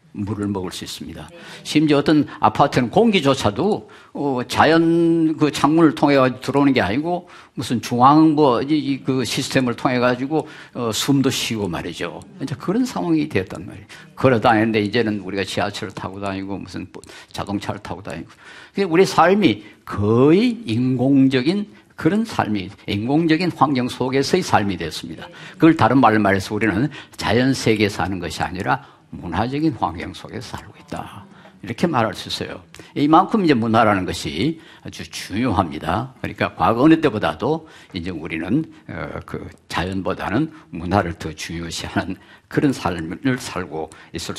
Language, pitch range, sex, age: Korean, 100-140 Hz, male, 50-69